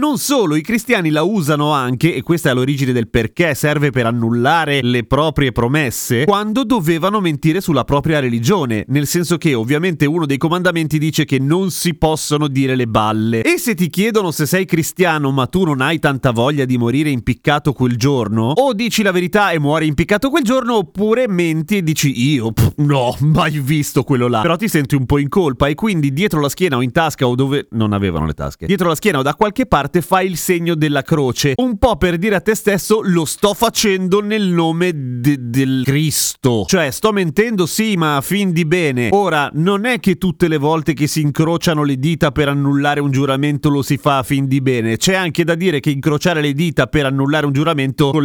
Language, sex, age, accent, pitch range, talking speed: Italian, male, 30-49, native, 135-180 Hz, 215 wpm